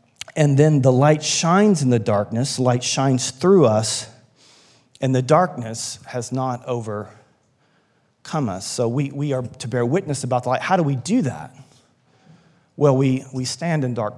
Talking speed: 170 wpm